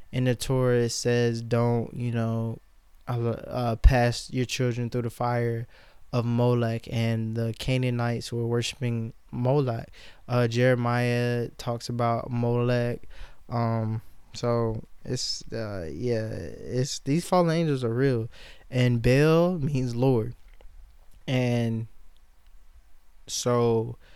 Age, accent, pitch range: 20-39, American, 115-125 Hz